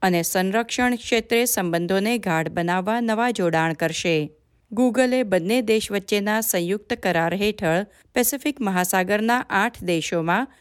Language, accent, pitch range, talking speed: Gujarati, native, 180-235 Hz, 115 wpm